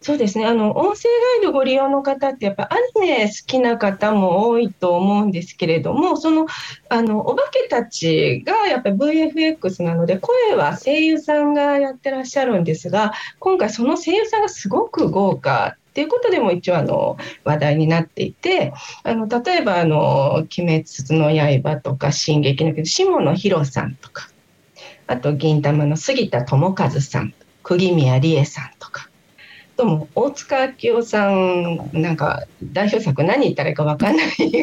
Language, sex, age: Japanese, female, 40-59